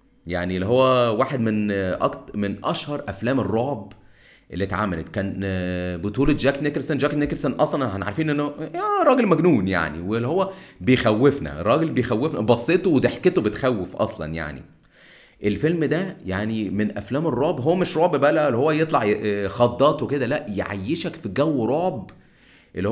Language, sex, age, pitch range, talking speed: Arabic, male, 30-49, 100-150 Hz, 145 wpm